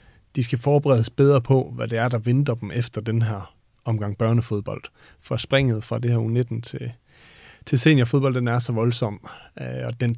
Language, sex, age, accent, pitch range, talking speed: Danish, male, 40-59, native, 115-130 Hz, 185 wpm